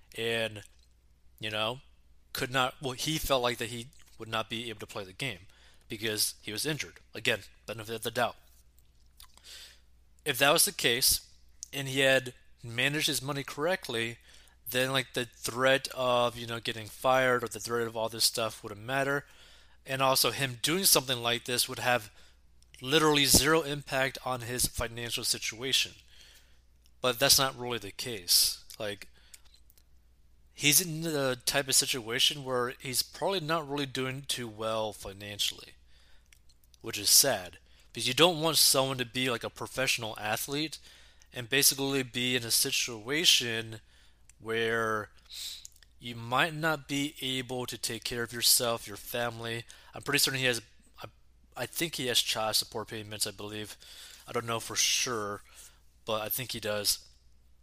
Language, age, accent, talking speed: English, 20-39, American, 160 wpm